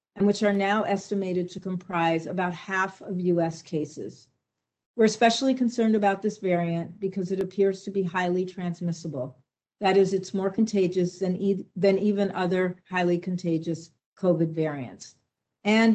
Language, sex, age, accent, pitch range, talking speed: English, female, 50-69, American, 175-205 Hz, 145 wpm